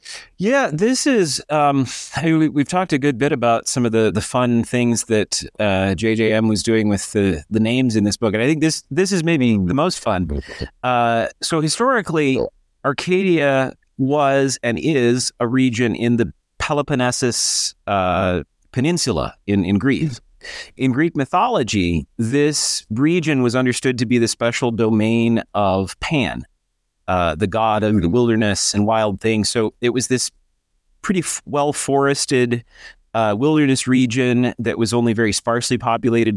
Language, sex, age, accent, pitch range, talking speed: English, male, 30-49, American, 110-135 Hz, 160 wpm